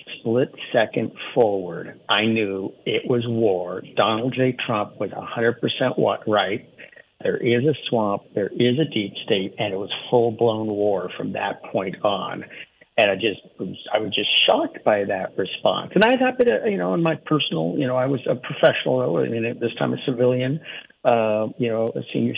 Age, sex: 60-79, male